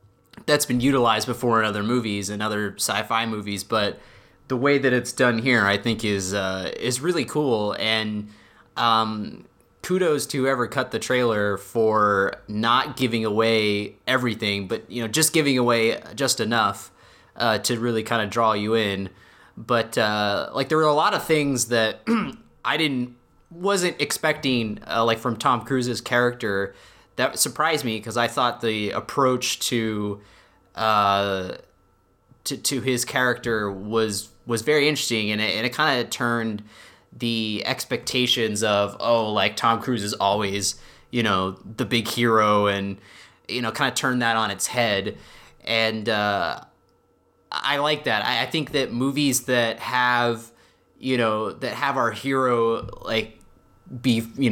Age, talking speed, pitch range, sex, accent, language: 20-39, 155 wpm, 105-125 Hz, male, American, English